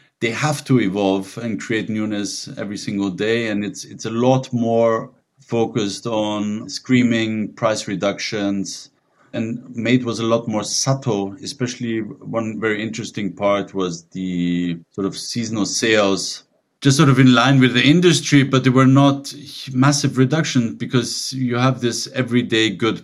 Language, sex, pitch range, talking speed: English, male, 100-125 Hz, 155 wpm